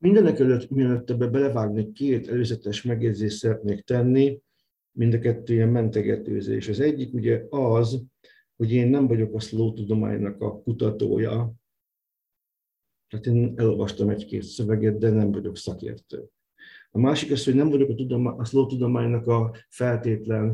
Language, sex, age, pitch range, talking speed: Hungarian, male, 50-69, 110-125 Hz, 145 wpm